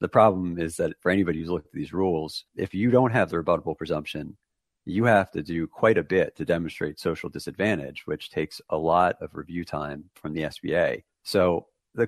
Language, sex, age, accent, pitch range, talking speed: English, male, 40-59, American, 85-110 Hz, 205 wpm